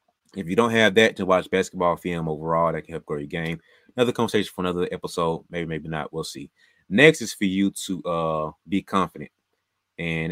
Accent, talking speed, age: American, 205 wpm, 20-39